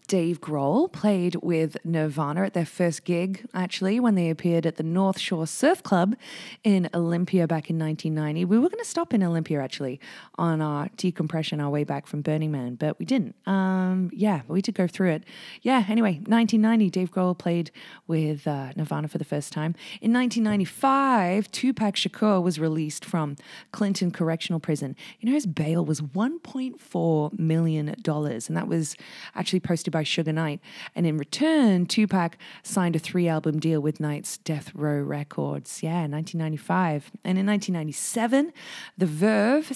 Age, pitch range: 20-39, 155-200 Hz